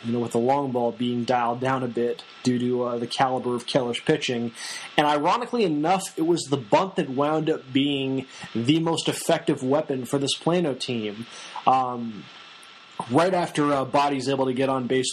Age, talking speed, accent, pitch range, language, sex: 20-39, 190 wpm, American, 130-150 Hz, English, male